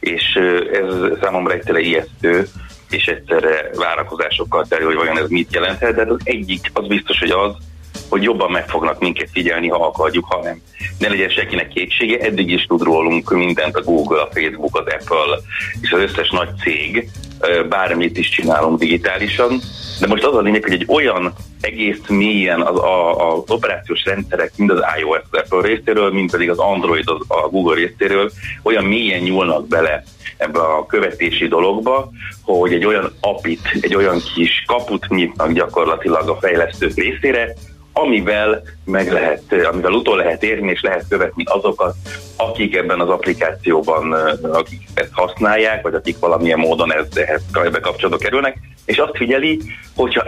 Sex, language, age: male, Hungarian, 30-49